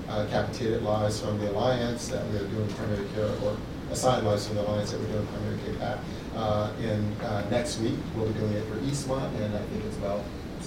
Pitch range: 105-115 Hz